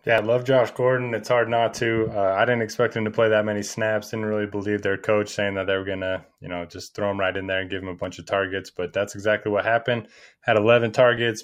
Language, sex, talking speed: English, male, 280 wpm